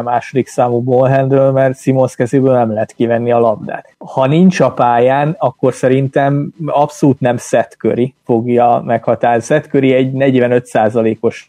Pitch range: 120-135 Hz